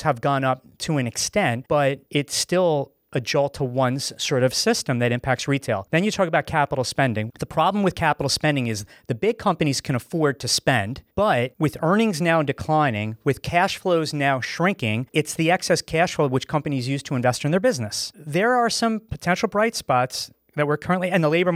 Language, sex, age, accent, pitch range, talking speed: English, male, 30-49, American, 125-160 Hz, 200 wpm